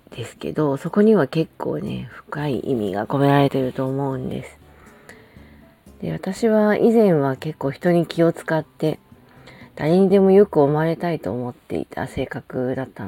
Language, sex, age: Japanese, female, 40-59